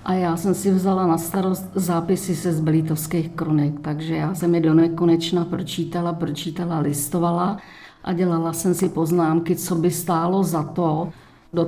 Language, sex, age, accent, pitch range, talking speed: Czech, female, 50-69, native, 165-185 Hz, 165 wpm